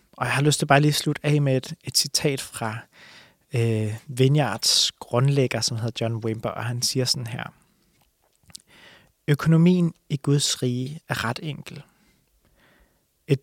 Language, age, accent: English, 30-49, Danish